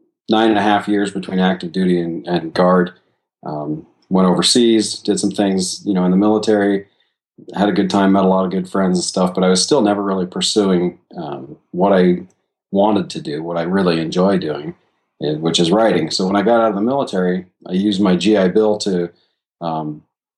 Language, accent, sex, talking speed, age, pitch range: English, American, male, 205 wpm, 40-59, 90-105 Hz